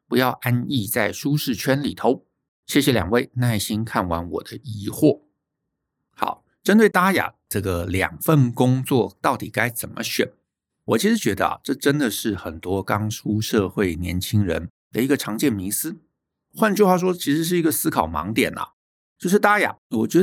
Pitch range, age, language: 100-140 Hz, 60-79, Chinese